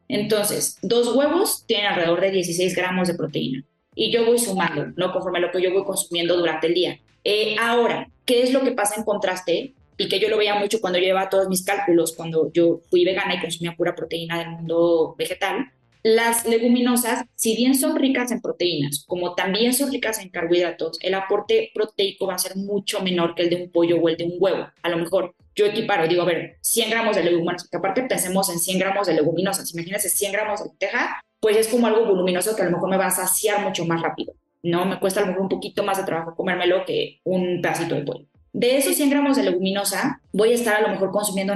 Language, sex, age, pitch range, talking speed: Spanish, female, 20-39, 175-215 Hz, 235 wpm